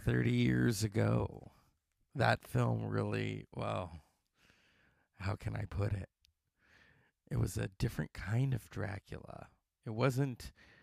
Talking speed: 115 wpm